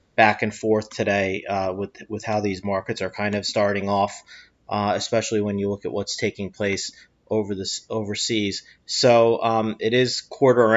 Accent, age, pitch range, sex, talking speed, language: American, 30-49, 100-110 Hz, male, 180 wpm, English